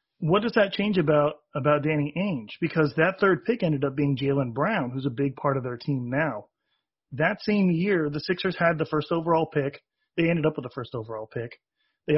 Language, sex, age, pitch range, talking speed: English, male, 30-49, 140-180 Hz, 215 wpm